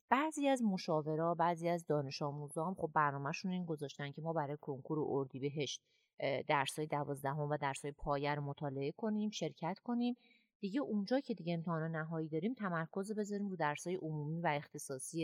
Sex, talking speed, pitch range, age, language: female, 185 wpm, 150-185 Hz, 30-49, Persian